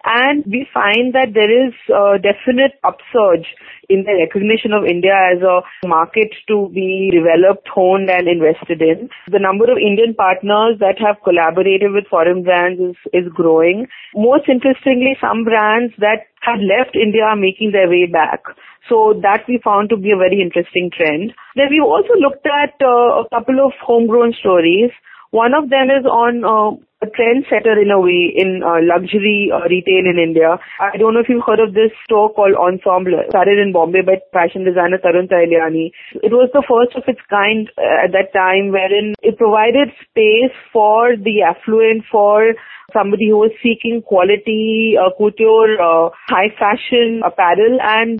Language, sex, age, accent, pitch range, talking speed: English, female, 30-49, Indian, 185-235 Hz, 175 wpm